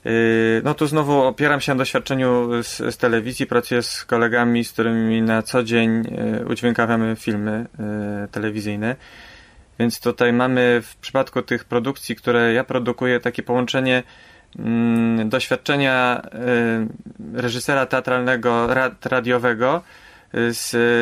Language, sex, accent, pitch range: Polish, male, native, 115-130 Hz